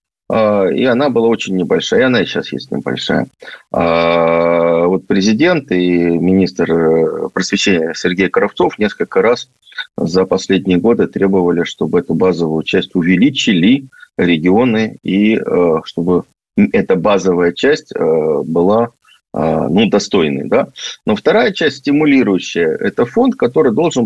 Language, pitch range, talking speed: Russian, 85-115 Hz, 115 wpm